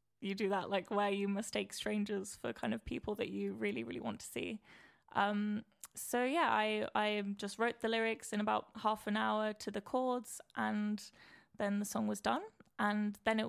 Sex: female